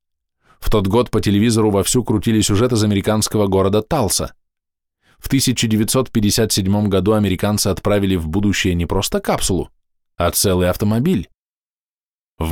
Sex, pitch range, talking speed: male, 90-115 Hz, 125 wpm